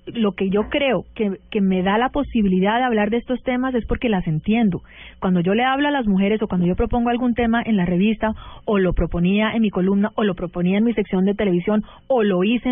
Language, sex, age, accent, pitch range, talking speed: Spanish, female, 30-49, Colombian, 200-245 Hz, 245 wpm